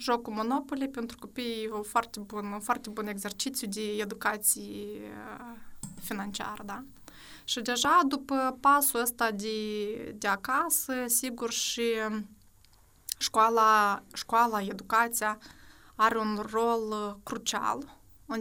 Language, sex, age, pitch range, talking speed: Romanian, female, 20-39, 210-235 Hz, 100 wpm